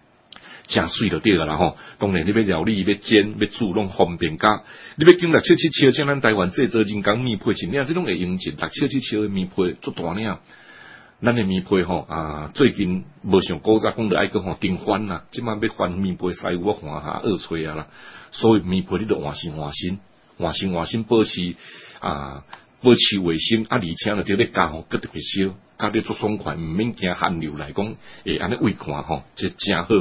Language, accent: Chinese, Malaysian